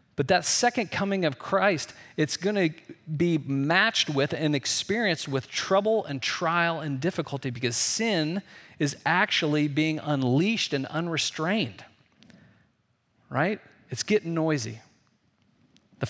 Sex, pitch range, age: male, 125-165 Hz, 40-59